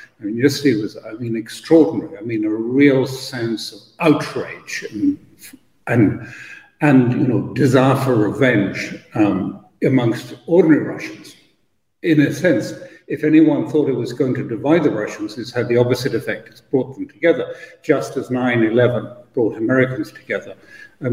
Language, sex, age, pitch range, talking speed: English, male, 60-79, 120-145 Hz, 155 wpm